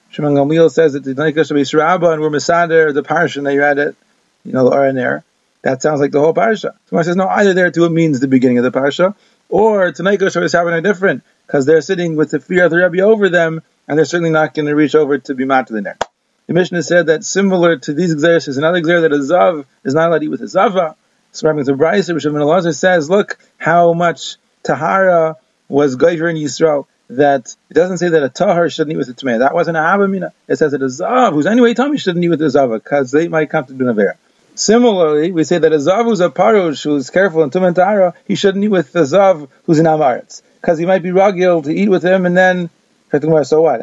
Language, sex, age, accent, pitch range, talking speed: English, male, 30-49, American, 150-180 Hz, 240 wpm